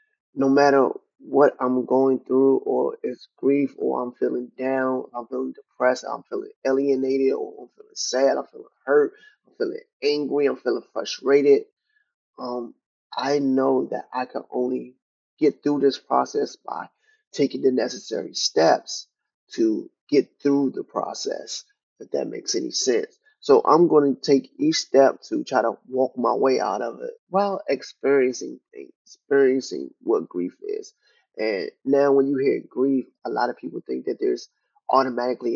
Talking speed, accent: 160 wpm, American